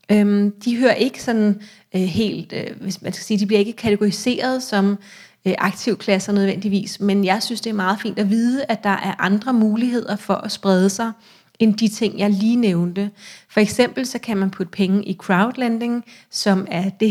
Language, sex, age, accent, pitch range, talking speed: Danish, female, 30-49, native, 190-215 Hz, 200 wpm